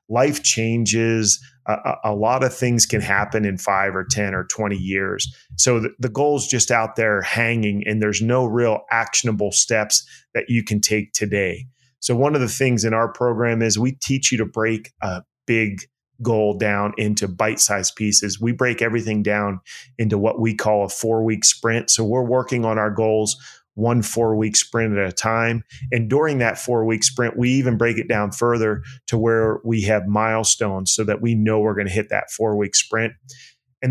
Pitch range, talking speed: 105-125 Hz, 190 wpm